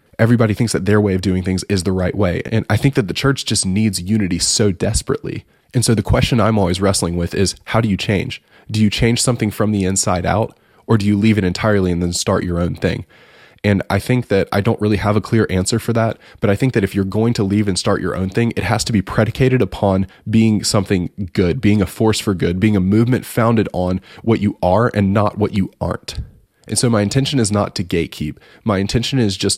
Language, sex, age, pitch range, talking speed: English, male, 20-39, 95-120 Hz, 250 wpm